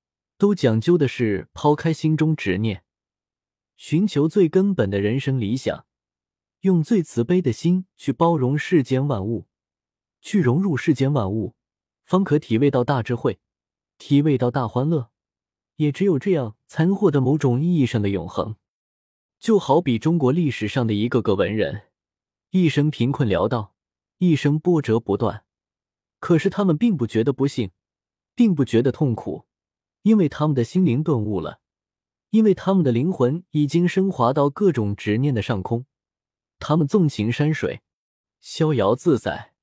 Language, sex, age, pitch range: Chinese, male, 20-39, 110-160 Hz